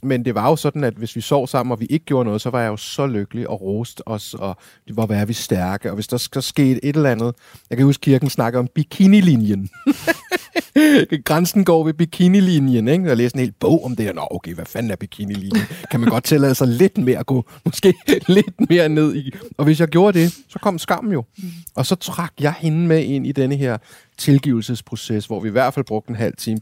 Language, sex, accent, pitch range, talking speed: Danish, male, native, 110-150 Hz, 240 wpm